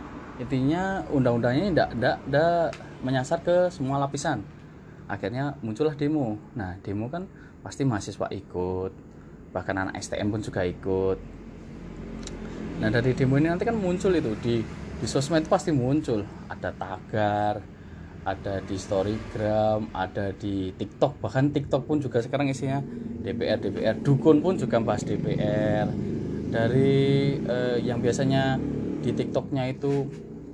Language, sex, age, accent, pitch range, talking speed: Indonesian, male, 20-39, native, 110-145 Hz, 125 wpm